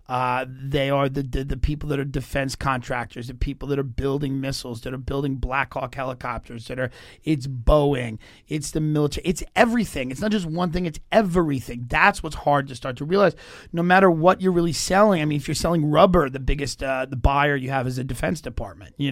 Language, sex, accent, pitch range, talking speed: English, male, American, 135-170 Hz, 220 wpm